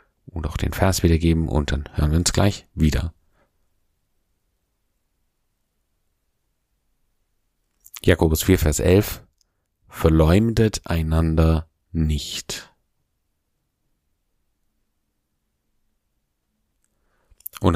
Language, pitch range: German, 80-100 Hz